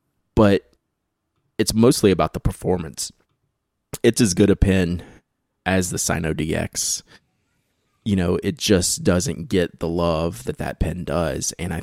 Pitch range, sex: 85-100 Hz, male